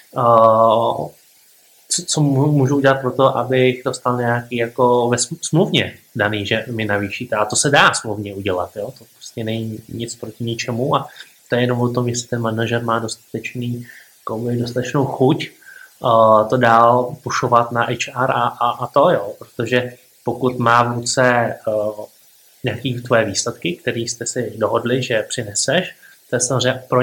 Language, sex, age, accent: Czech, male, 20-39, native